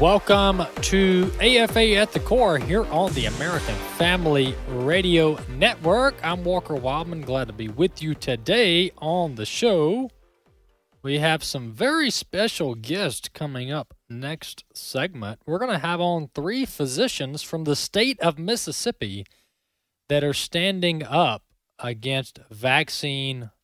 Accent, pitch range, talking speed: American, 115-160 Hz, 135 wpm